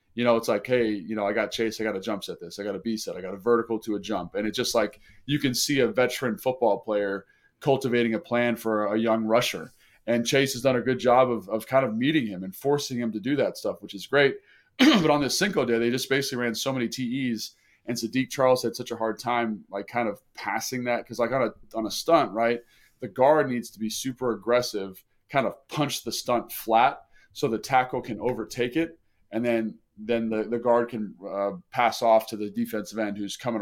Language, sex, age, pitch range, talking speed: English, male, 20-39, 110-130 Hz, 250 wpm